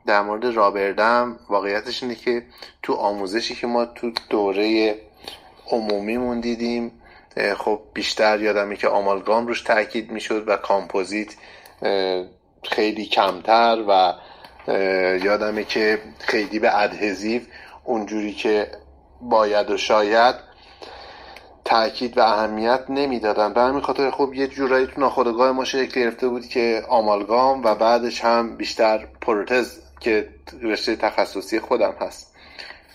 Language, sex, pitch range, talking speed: Persian, male, 100-120 Hz, 115 wpm